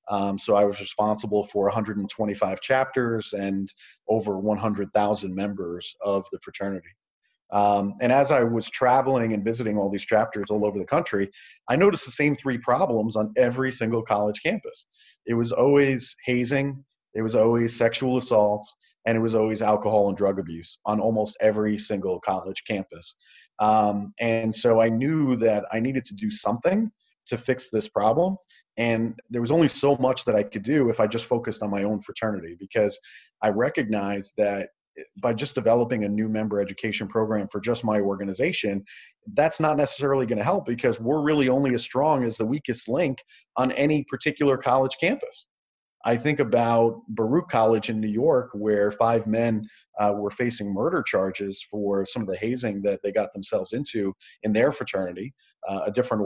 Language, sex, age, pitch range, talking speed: English, male, 30-49, 105-125 Hz, 175 wpm